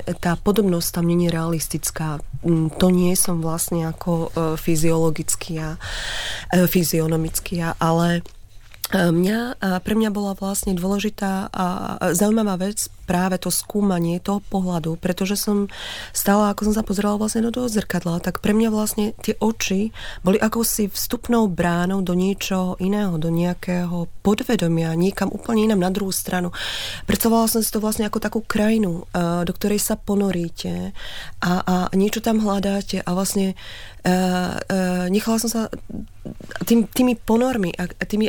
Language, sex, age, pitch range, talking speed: Czech, female, 30-49, 175-210 Hz, 135 wpm